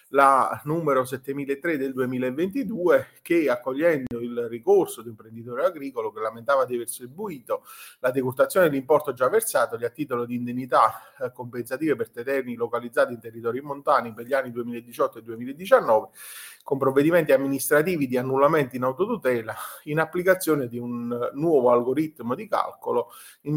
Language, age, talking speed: Italian, 30-49, 145 wpm